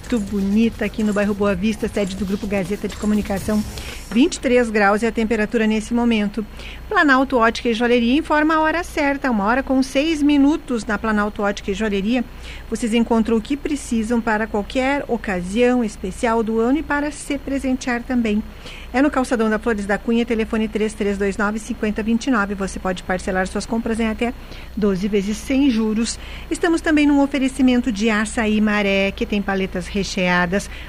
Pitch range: 215-265 Hz